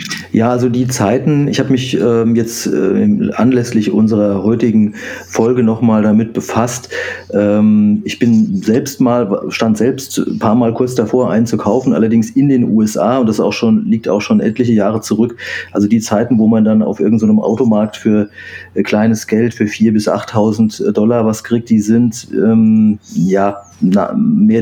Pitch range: 105-130 Hz